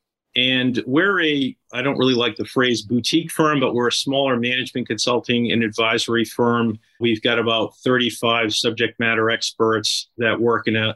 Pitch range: 115-125 Hz